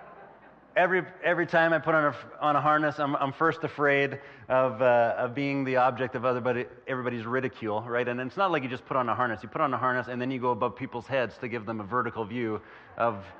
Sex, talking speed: male, 250 wpm